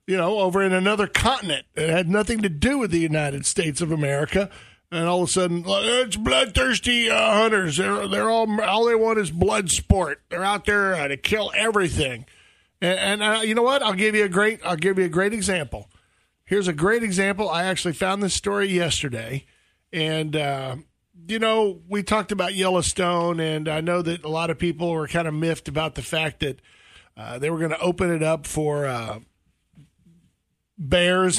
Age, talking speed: 50-69, 195 wpm